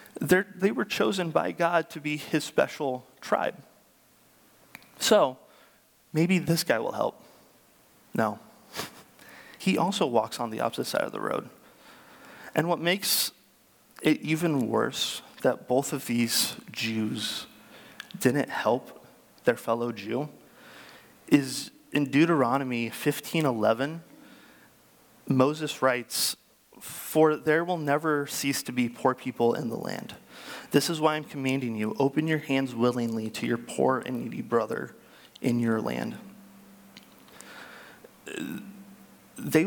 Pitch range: 130-165 Hz